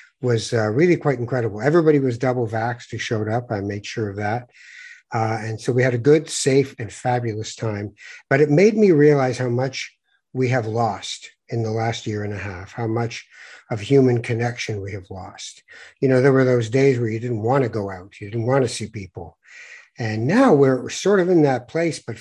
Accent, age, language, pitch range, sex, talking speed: American, 60-79, English, 110-135 Hz, male, 220 wpm